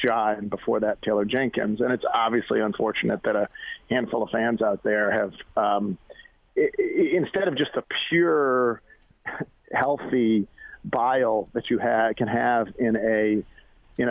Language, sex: English, male